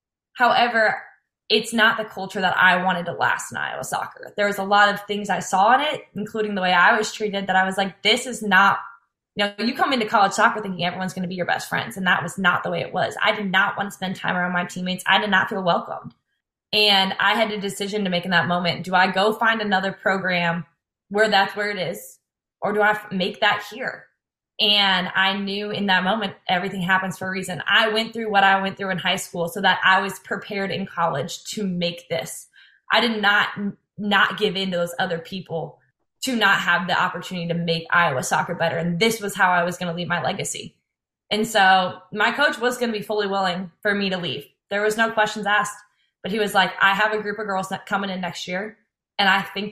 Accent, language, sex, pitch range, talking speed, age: American, English, female, 180-205 Hz, 240 wpm, 20-39